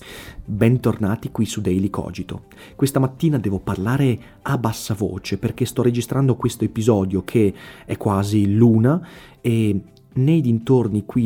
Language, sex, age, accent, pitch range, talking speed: Italian, male, 30-49, native, 100-125 Hz, 135 wpm